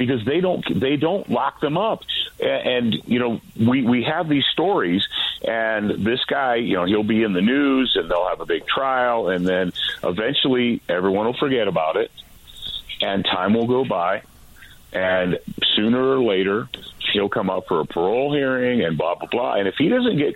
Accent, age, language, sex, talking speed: American, 40-59, English, male, 195 wpm